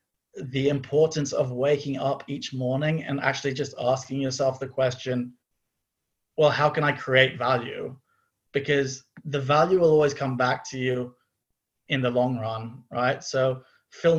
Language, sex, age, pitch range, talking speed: English, male, 20-39, 125-145 Hz, 150 wpm